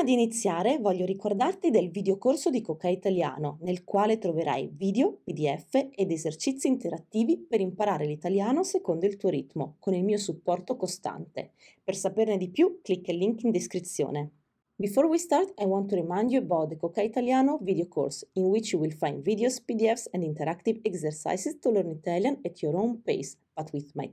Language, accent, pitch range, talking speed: Italian, native, 165-235 Hz, 180 wpm